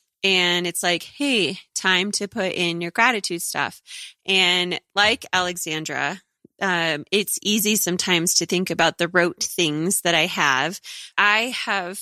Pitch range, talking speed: 175-210 Hz, 145 wpm